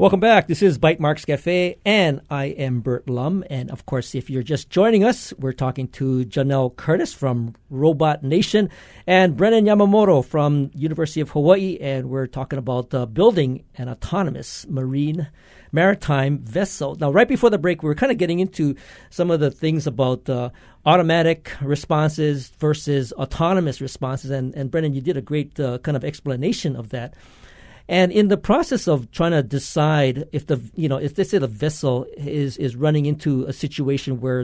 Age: 50-69